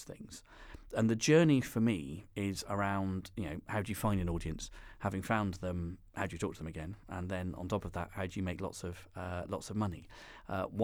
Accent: British